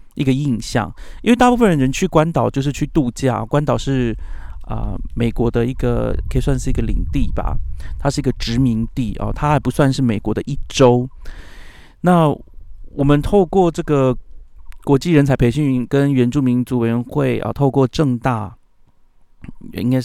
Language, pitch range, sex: Chinese, 115-135 Hz, male